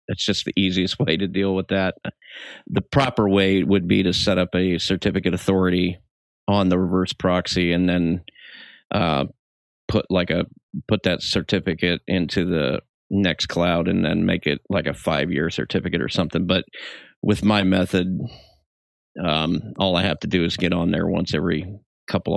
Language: English